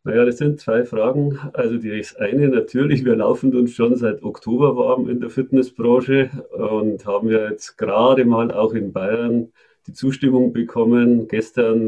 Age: 40-59